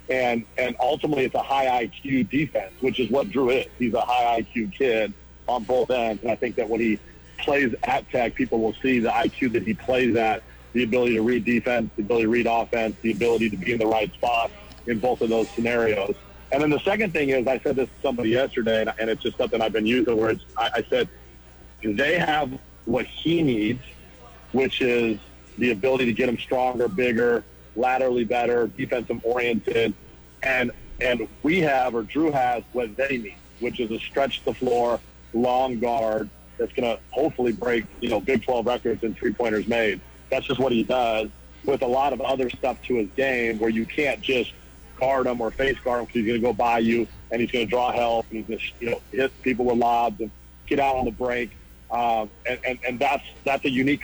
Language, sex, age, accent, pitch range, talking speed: English, male, 40-59, American, 110-125 Hz, 215 wpm